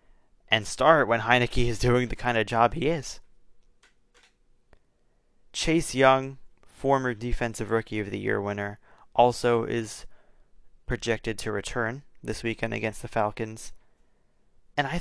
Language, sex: English, male